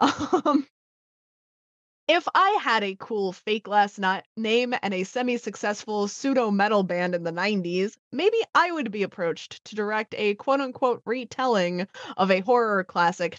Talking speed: 140 wpm